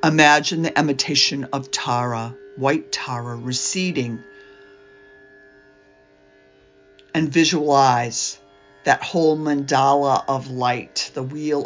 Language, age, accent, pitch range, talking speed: English, 50-69, American, 125-170 Hz, 85 wpm